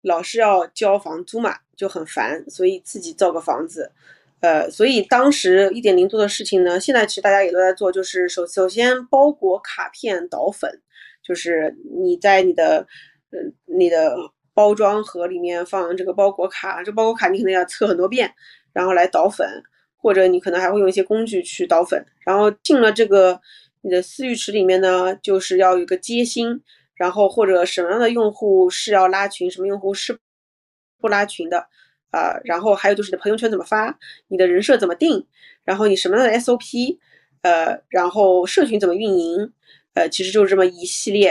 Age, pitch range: 20-39, 185-225 Hz